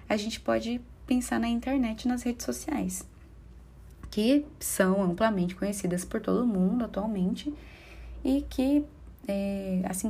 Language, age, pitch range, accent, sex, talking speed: Portuguese, 20-39, 180-235 Hz, Brazilian, female, 130 wpm